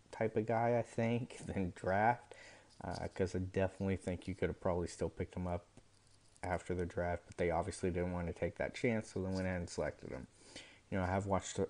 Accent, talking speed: American, 225 wpm